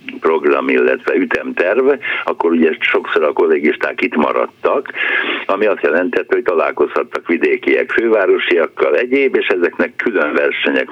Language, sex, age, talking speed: Hungarian, male, 60-79, 120 wpm